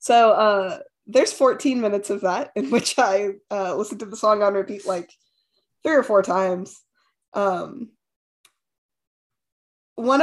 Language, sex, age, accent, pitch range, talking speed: English, female, 20-39, American, 185-215 Hz, 140 wpm